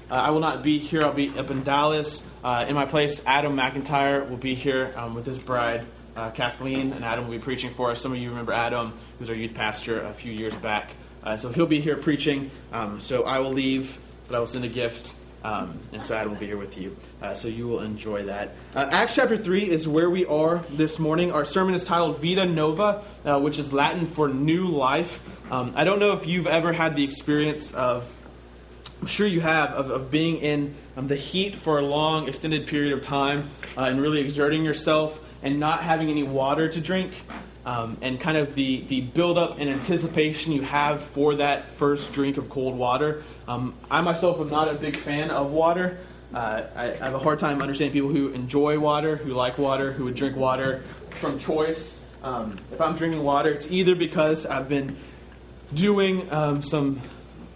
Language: English